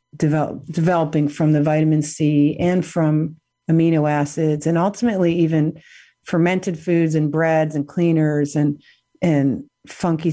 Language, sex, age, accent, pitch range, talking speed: English, female, 40-59, American, 145-180 Hz, 130 wpm